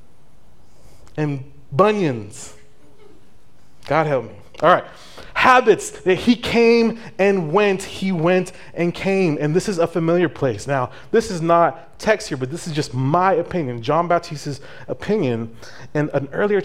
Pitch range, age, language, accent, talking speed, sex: 125-170 Hz, 30-49, English, American, 150 wpm, male